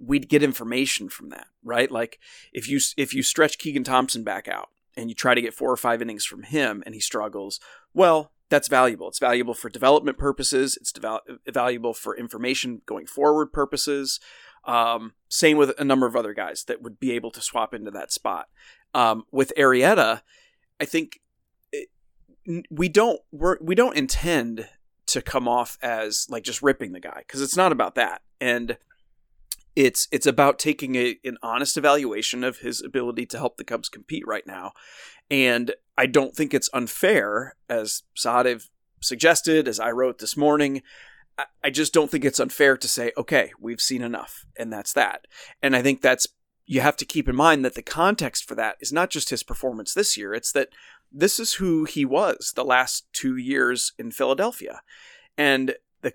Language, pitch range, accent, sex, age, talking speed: English, 125-160 Hz, American, male, 30-49, 185 wpm